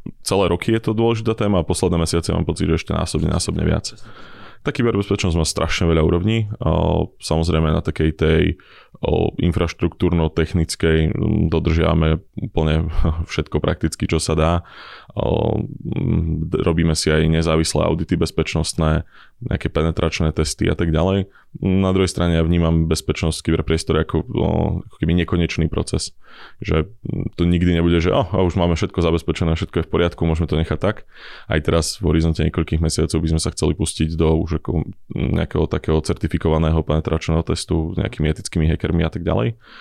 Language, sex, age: Czech, male, 20-39